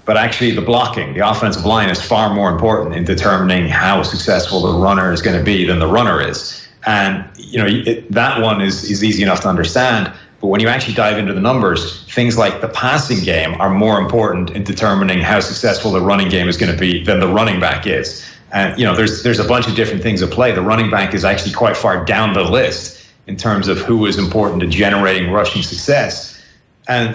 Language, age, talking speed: English, 40-59, 225 wpm